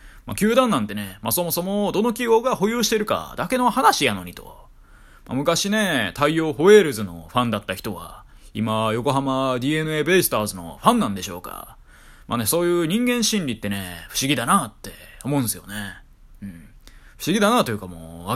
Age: 20-39